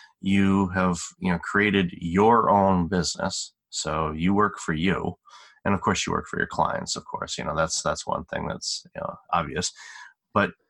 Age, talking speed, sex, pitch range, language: 30-49, 190 wpm, male, 85-95 Hz, English